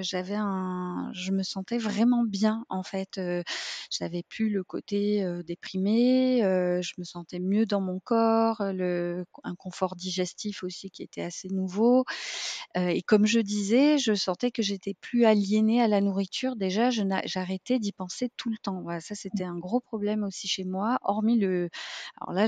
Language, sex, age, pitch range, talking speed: French, female, 30-49, 180-215 Hz, 185 wpm